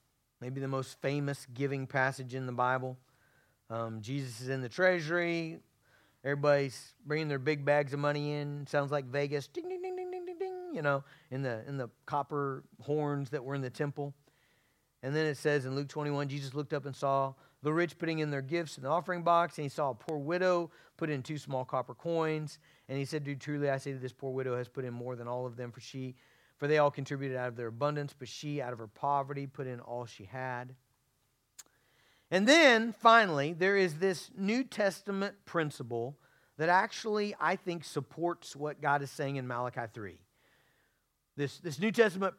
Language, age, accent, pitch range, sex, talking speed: English, 40-59, American, 130-160 Hz, male, 205 wpm